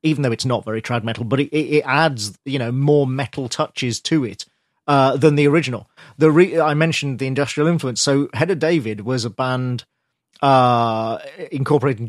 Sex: male